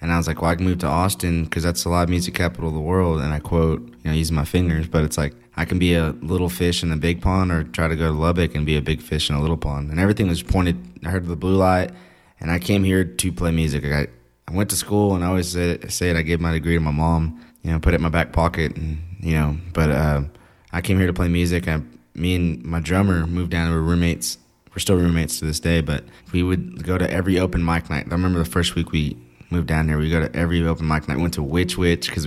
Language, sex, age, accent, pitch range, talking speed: English, male, 20-39, American, 80-90 Hz, 290 wpm